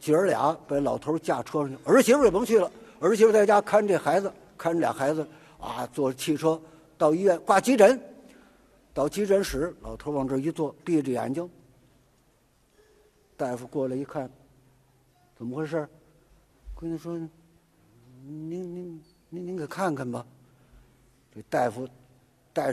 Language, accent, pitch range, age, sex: Chinese, native, 130-165 Hz, 50-69, male